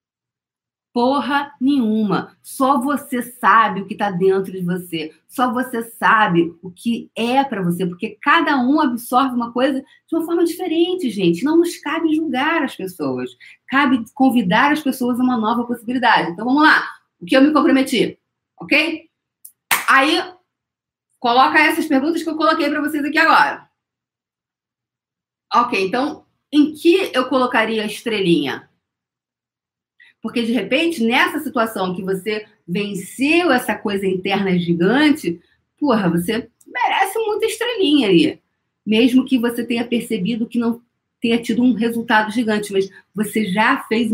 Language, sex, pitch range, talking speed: Portuguese, female, 195-285 Hz, 145 wpm